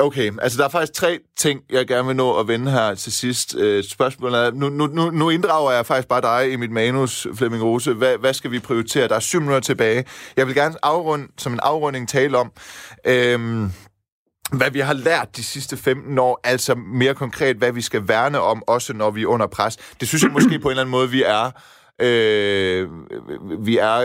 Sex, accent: male, native